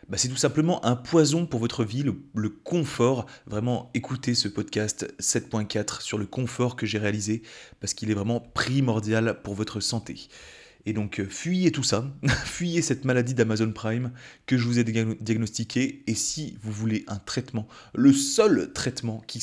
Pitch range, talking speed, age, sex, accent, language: 110-140 Hz, 175 wpm, 30-49, male, French, French